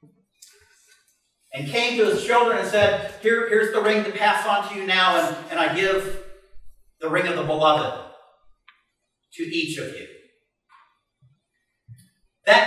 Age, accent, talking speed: 50-69, American, 140 wpm